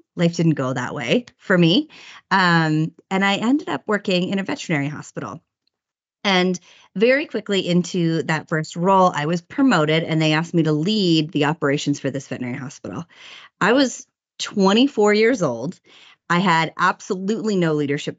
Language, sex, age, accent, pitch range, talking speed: English, female, 30-49, American, 150-185 Hz, 160 wpm